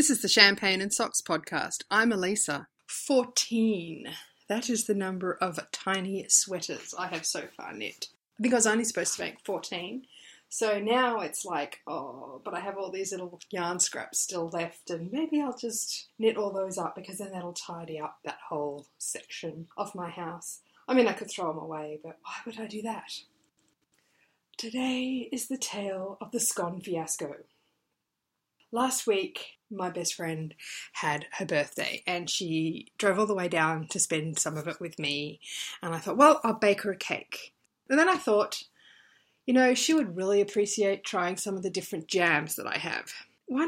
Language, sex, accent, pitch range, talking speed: English, female, Australian, 175-235 Hz, 190 wpm